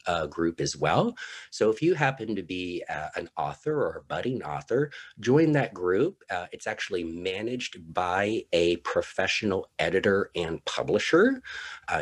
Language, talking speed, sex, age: English, 155 wpm, male, 40-59